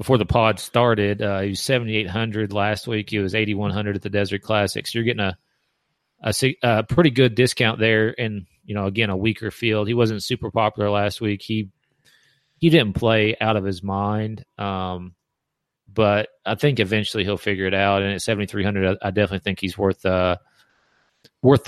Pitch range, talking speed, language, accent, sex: 100-115 Hz, 185 wpm, English, American, male